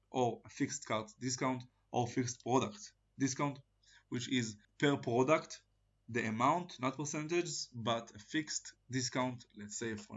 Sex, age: male, 20-39